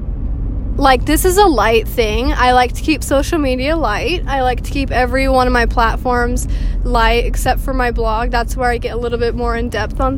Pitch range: 240-275 Hz